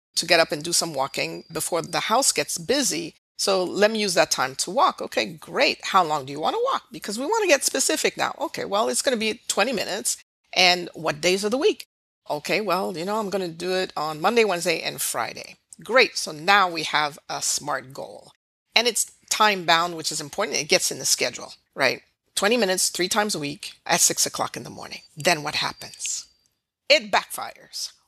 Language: English